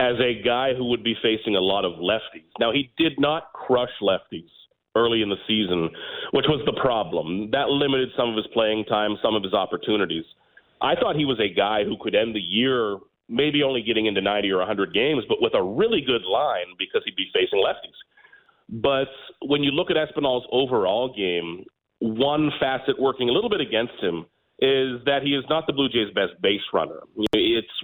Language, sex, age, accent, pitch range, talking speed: English, male, 40-59, American, 115-150 Hz, 205 wpm